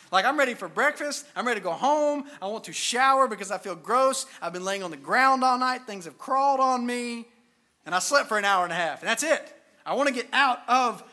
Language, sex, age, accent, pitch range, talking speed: English, male, 30-49, American, 195-260 Hz, 265 wpm